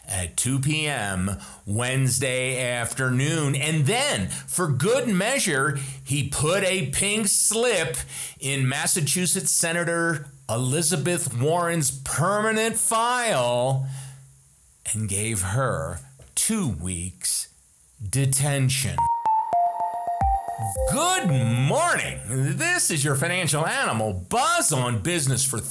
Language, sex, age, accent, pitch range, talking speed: English, male, 40-59, American, 115-165 Hz, 90 wpm